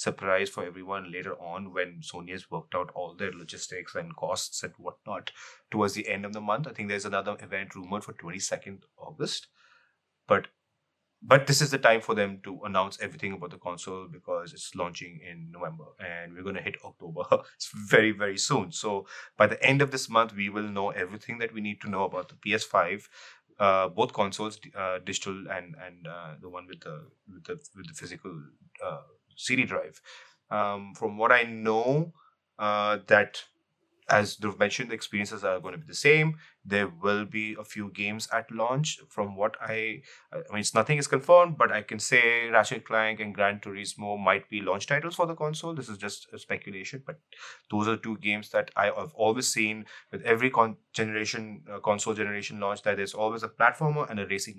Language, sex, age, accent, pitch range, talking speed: English, male, 30-49, Indian, 100-115 Hz, 200 wpm